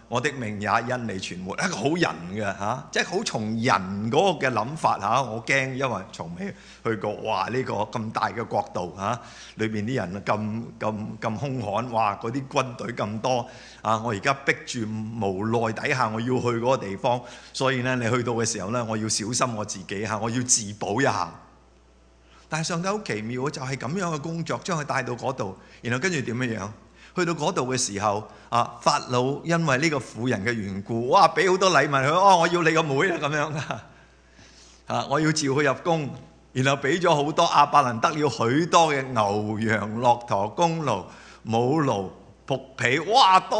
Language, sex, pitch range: English, male, 110-150 Hz